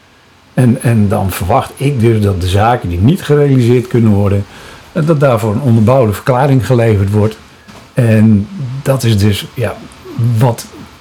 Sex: male